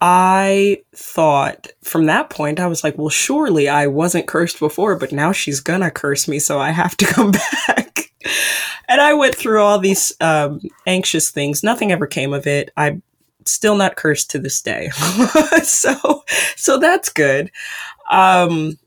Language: English